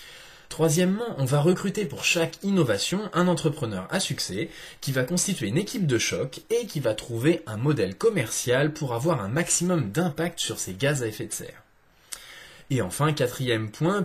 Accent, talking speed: French, 175 wpm